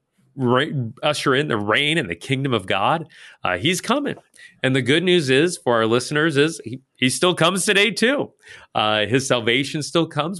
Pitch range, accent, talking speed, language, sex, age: 110-160 Hz, American, 185 wpm, English, male, 30-49